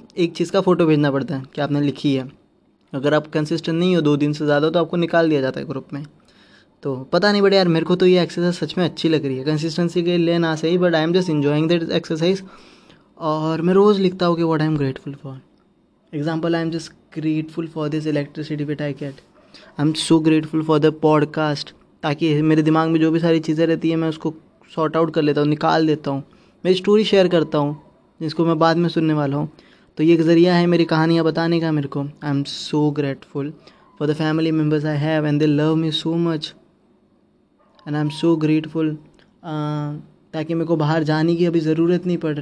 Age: 20-39